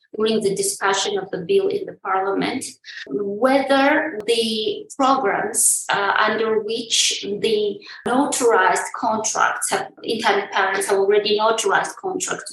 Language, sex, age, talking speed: English, female, 20-39, 115 wpm